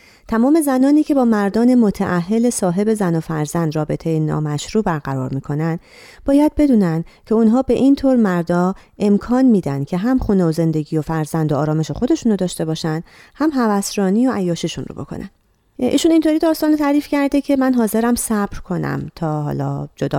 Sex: female